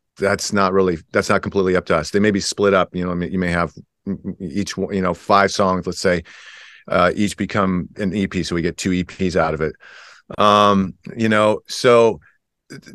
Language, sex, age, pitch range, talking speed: English, male, 40-59, 95-110 Hz, 205 wpm